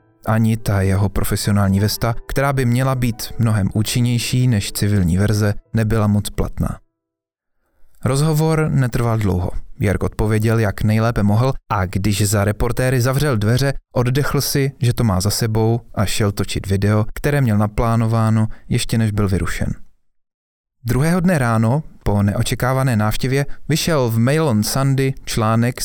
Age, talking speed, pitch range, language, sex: 30-49, 140 wpm, 105-135 Hz, Czech, male